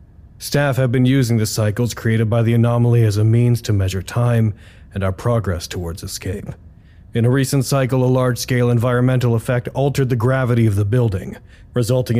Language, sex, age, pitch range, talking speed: English, male, 40-59, 100-125 Hz, 175 wpm